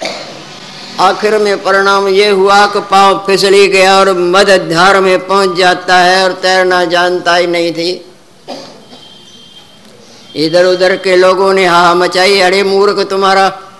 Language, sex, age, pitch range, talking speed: Hindi, female, 50-69, 180-210 Hz, 125 wpm